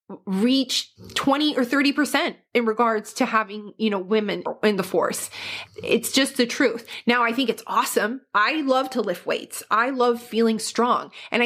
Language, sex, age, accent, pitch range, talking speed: English, female, 20-39, American, 210-250 Hz, 175 wpm